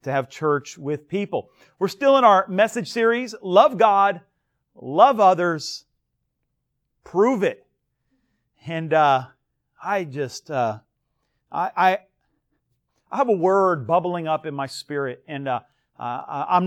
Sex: male